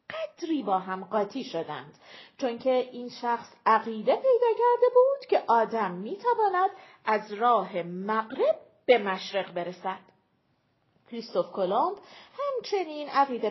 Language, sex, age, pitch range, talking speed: Persian, female, 40-59, 215-355 Hz, 120 wpm